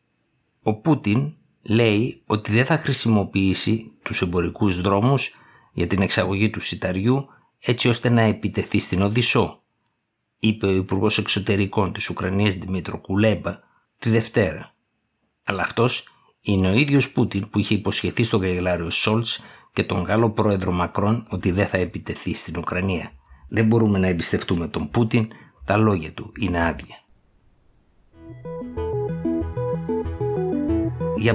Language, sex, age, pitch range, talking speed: Greek, male, 60-79, 90-115 Hz, 125 wpm